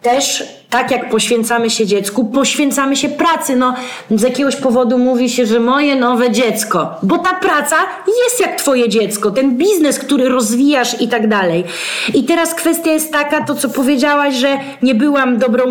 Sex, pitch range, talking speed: female, 225-280 Hz, 170 wpm